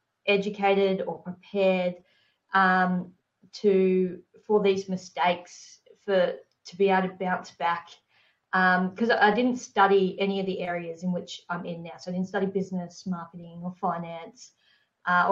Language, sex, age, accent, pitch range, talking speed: English, female, 20-39, Australian, 180-210 Hz, 150 wpm